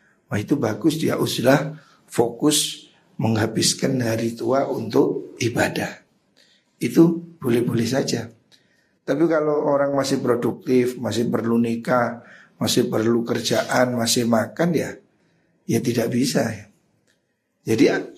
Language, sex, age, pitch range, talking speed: Indonesian, male, 60-79, 120-145 Hz, 105 wpm